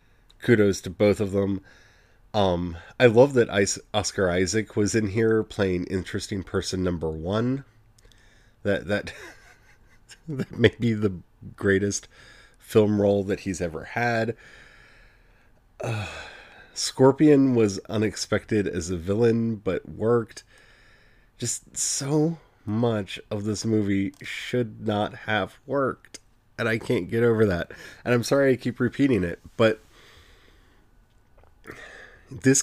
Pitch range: 90-115 Hz